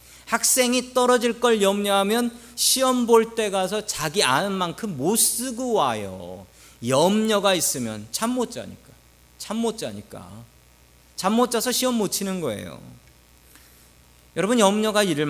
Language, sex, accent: Korean, male, native